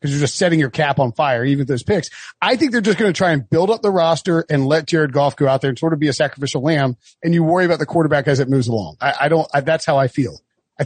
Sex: male